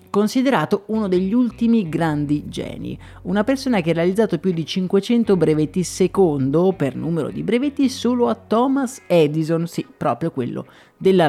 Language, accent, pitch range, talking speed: Italian, native, 155-225 Hz, 150 wpm